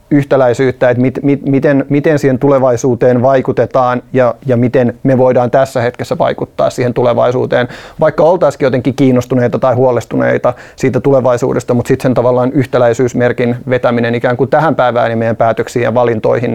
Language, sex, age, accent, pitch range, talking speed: Finnish, male, 30-49, native, 120-135 Hz, 150 wpm